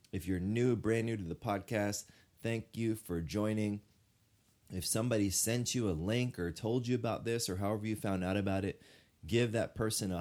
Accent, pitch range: American, 90-110 Hz